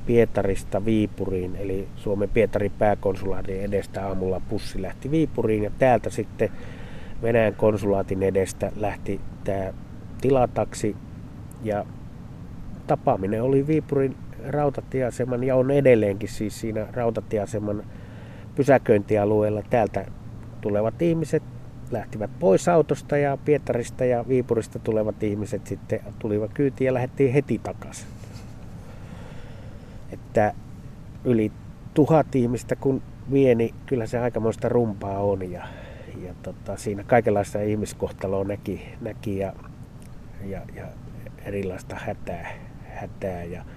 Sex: male